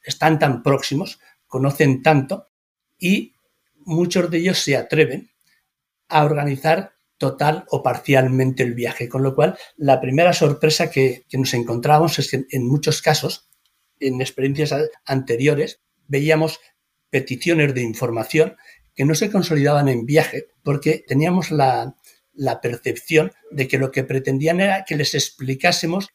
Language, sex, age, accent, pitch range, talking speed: Spanish, male, 60-79, Spanish, 135-160 Hz, 140 wpm